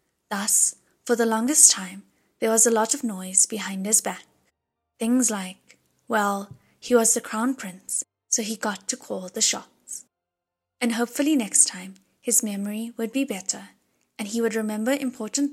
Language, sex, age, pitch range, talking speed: English, female, 10-29, 195-255 Hz, 165 wpm